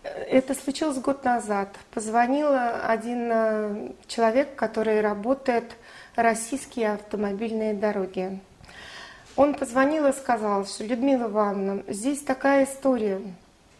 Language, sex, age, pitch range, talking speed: Russian, female, 30-49, 205-260 Hz, 95 wpm